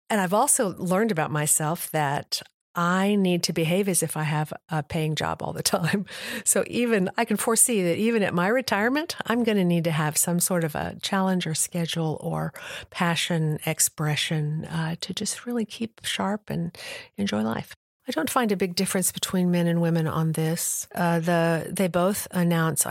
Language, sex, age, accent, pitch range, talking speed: English, female, 50-69, American, 165-200 Hz, 190 wpm